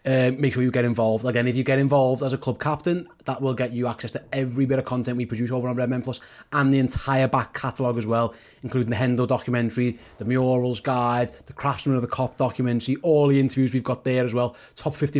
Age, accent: 30-49, British